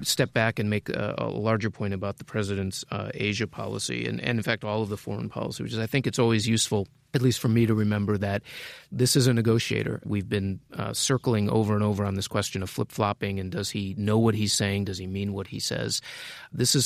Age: 30-49